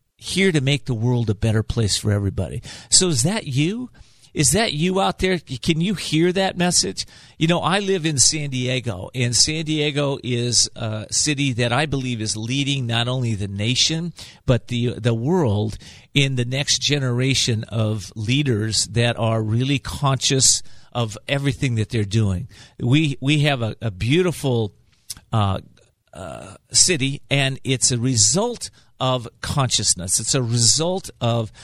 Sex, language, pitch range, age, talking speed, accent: male, English, 115-150 Hz, 50-69, 160 wpm, American